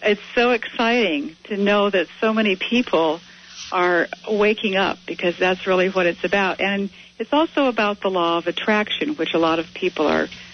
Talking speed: 180 wpm